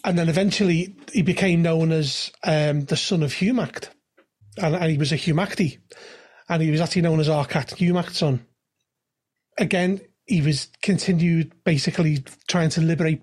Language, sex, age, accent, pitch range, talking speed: English, male, 30-49, British, 155-180 Hz, 160 wpm